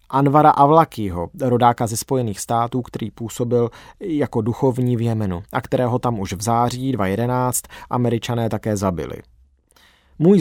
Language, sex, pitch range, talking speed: Czech, male, 105-140 Hz, 135 wpm